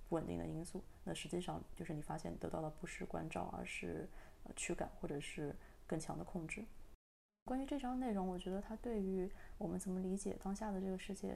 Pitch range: 155-195 Hz